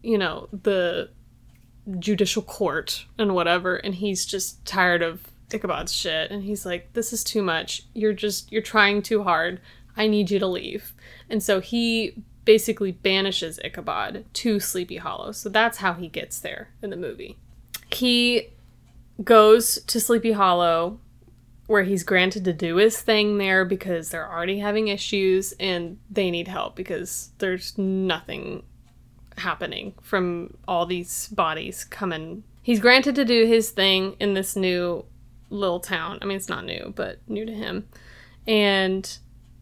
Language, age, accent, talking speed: English, 20-39, American, 155 wpm